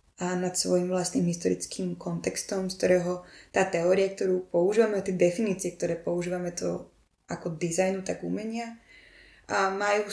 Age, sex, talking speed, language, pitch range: 20-39, female, 135 wpm, Slovak, 175-195 Hz